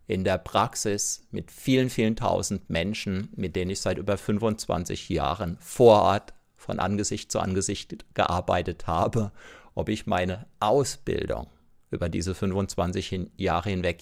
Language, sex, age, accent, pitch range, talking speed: German, male, 50-69, German, 90-115 Hz, 135 wpm